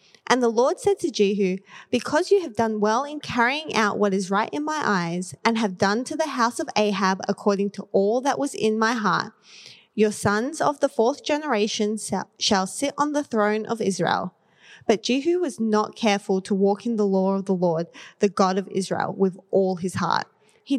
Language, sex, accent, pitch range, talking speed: English, female, Australian, 195-235 Hz, 205 wpm